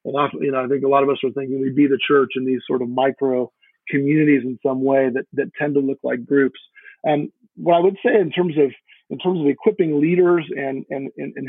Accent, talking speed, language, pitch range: American, 255 wpm, English, 135-160 Hz